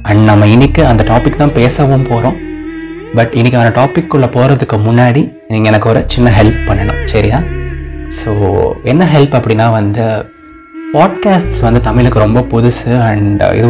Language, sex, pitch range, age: Tamil, male, 110-135 Hz, 20-39